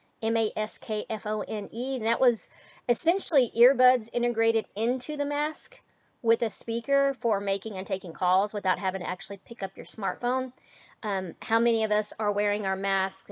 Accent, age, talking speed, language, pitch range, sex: American, 40-59, 190 wpm, English, 200-245 Hz, female